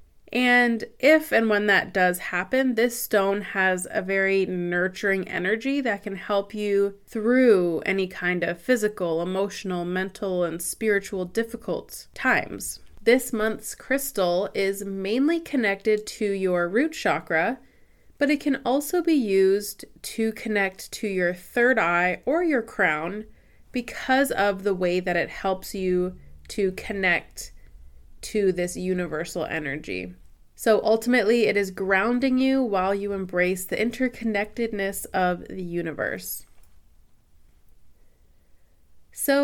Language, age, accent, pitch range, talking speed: English, 20-39, American, 180-235 Hz, 125 wpm